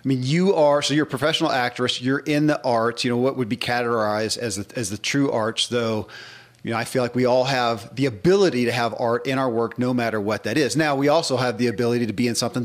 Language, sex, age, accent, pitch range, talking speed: English, male, 40-59, American, 115-135 Hz, 265 wpm